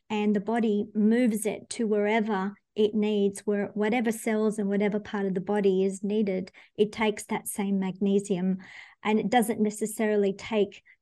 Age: 50-69